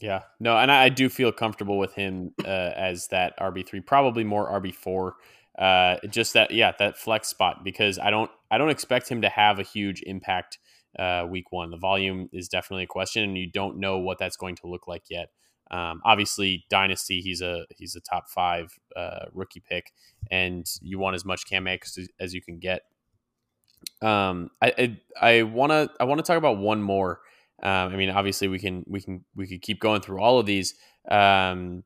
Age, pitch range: 20-39, 95-105 Hz